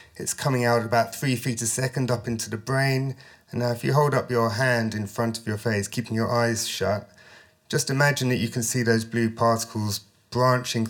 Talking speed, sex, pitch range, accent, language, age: 215 wpm, male, 115-135 Hz, British, English, 30-49